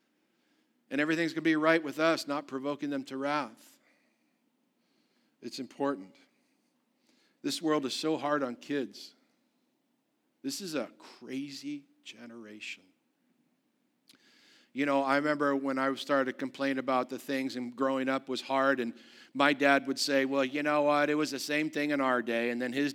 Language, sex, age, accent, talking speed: English, male, 50-69, American, 165 wpm